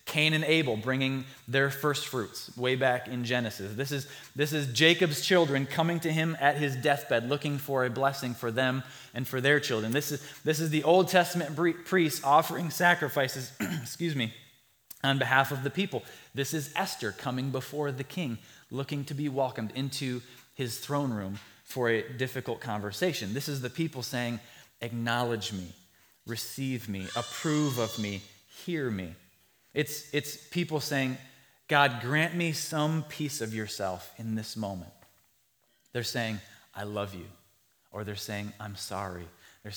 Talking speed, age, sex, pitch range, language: 165 wpm, 20-39, male, 115-150 Hz, English